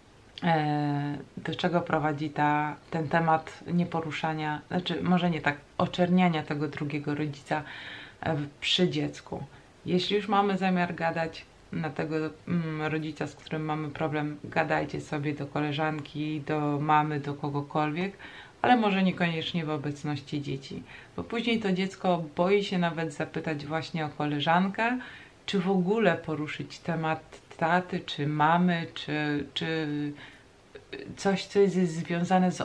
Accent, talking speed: native, 125 wpm